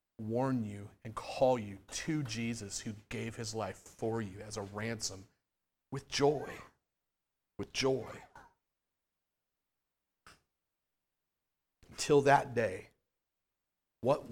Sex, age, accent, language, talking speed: male, 40-59, American, English, 100 wpm